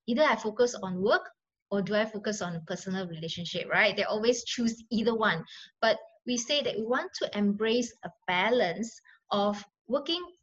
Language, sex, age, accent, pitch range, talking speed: English, female, 20-39, Malaysian, 200-255 Hz, 175 wpm